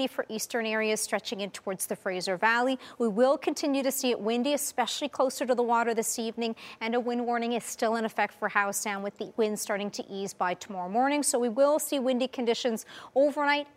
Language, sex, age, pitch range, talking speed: English, female, 40-59, 225-270 Hz, 215 wpm